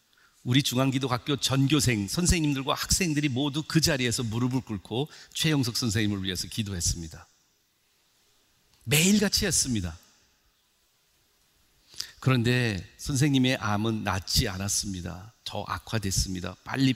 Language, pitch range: Korean, 100-135 Hz